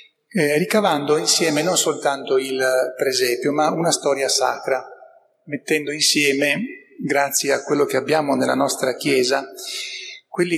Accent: native